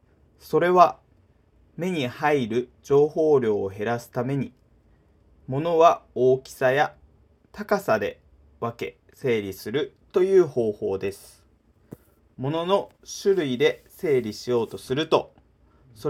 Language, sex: Japanese, male